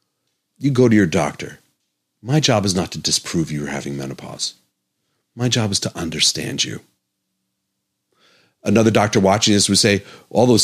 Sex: male